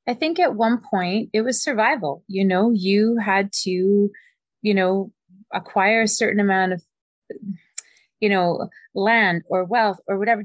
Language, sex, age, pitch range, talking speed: English, female, 20-39, 195-230 Hz, 155 wpm